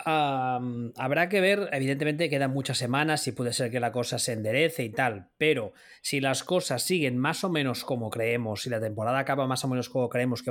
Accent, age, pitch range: Spanish, 20-39, 130-190 Hz